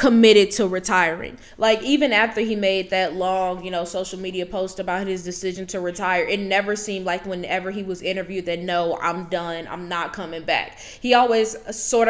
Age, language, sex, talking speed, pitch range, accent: 10-29, English, female, 195 wpm, 185-215 Hz, American